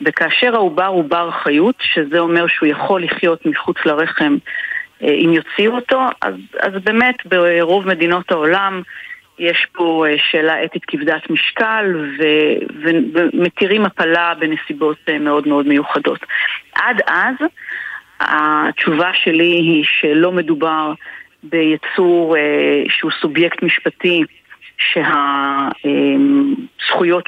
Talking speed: 100 wpm